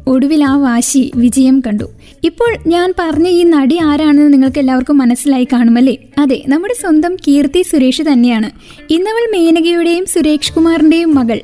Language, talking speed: Malayalam, 135 wpm